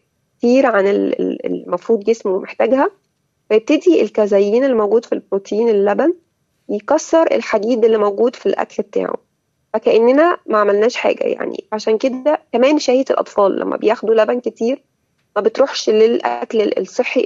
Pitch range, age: 210-265 Hz, 20-39